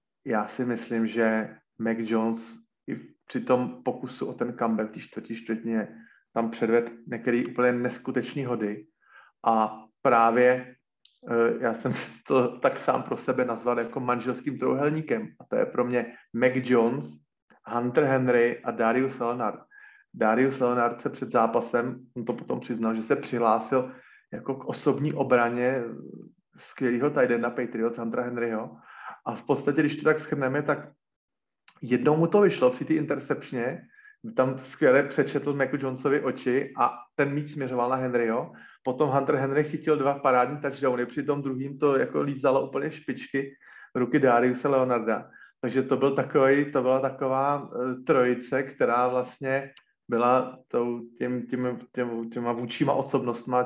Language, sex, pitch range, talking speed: Slovak, male, 120-135 Hz, 150 wpm